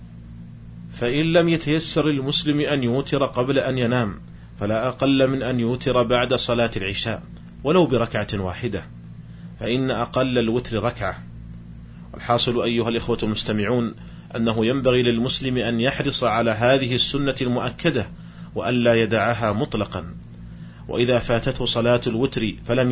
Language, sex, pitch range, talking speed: Arabic, male, 110-135 Hz, 120 wpm